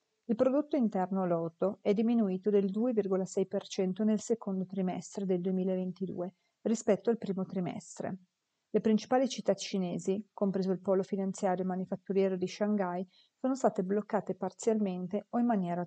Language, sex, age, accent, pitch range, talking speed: Italian, female, 30-49, native, 185-220 Hz, 135 wpm